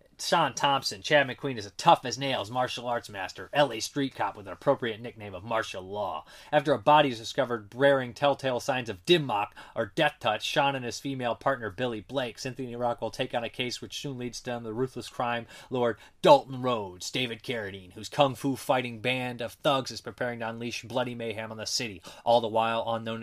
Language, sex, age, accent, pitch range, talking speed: English, male, 30-49, American, 115-140 Hz, 210 wpm